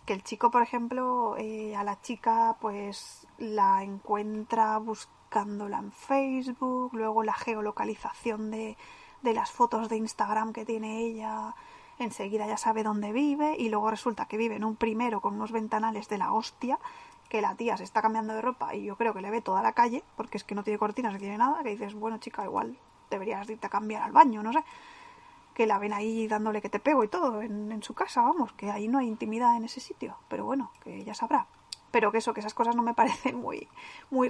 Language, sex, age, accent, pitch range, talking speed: Spanish, female, 20-39, Spanish, 220-280 Hz, 220 wpm